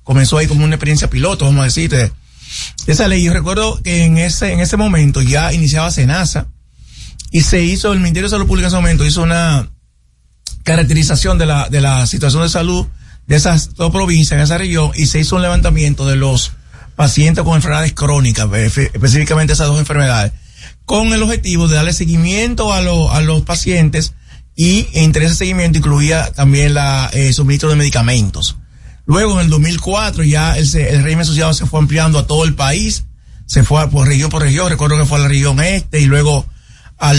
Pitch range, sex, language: 145-170 Hz, male, Spanish